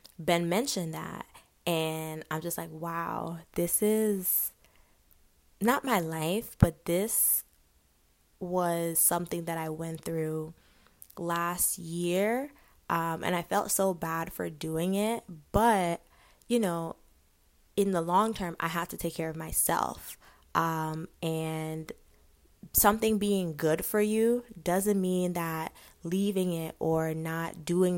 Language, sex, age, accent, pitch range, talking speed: English, female, 20-39, American, 165-210 Hz, 130 wpm